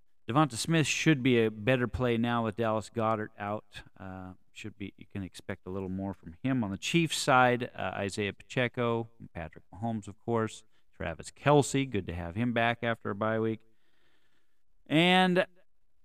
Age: 40-59